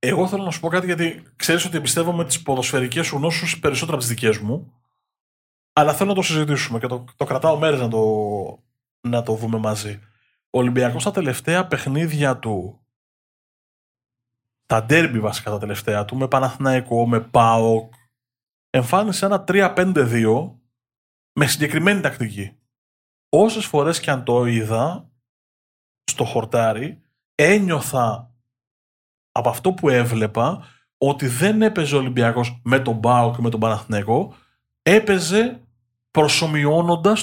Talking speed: 135 wpm